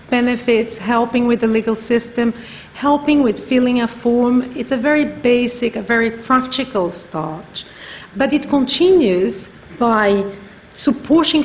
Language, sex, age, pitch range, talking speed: English, female, 50-69, 195-250 Hz, 125 wpm